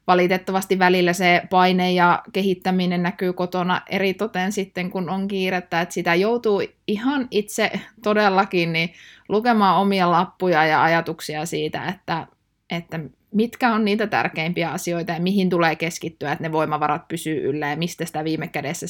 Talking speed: 145 wpm